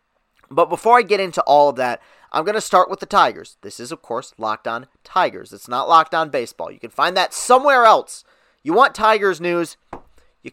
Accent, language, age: American, English, 30-49